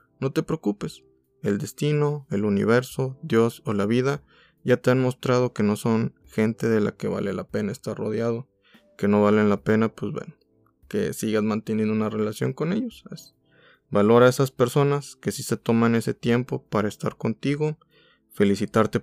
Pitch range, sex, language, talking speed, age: 105-125 Hz, male, Spanish, 175 wpm, 20-39